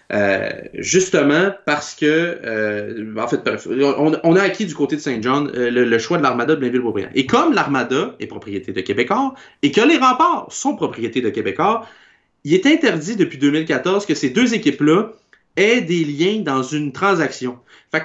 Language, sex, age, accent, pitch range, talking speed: French, male, 30-49, Canadian, 130-180 Hz, 185 wpm